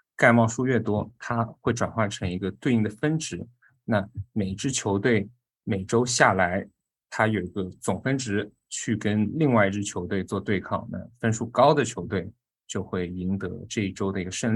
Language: Chinese